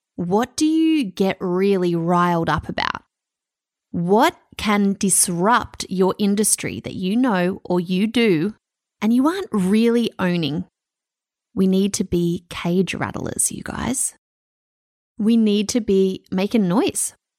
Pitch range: 185-255 Hz